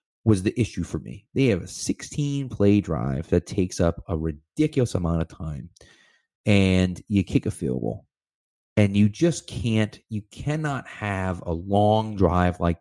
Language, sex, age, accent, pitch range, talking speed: English, male, 30-49, American, 95-120 Hz, 170 wpm